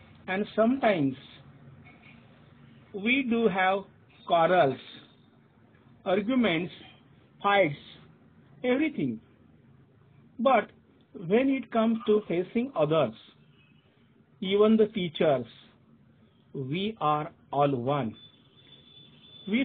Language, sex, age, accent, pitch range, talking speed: Marathi, male, 50-69, native, 135-205 Hz, 75 wpm